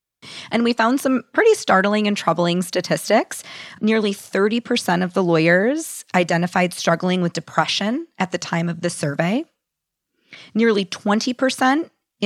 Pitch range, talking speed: 165-215 Hz, 125 wpm